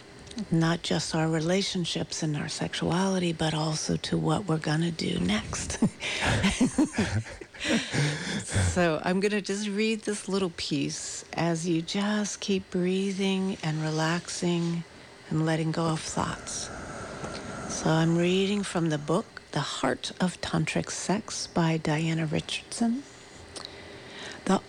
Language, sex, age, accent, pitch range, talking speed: English, female, 60-79, American, 165-205 Hz, 125 wpm